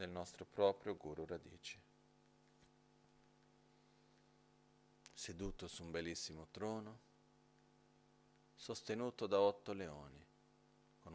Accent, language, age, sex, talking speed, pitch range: native, Italian, 40-59, male, 80 wpm, 85-95 Hz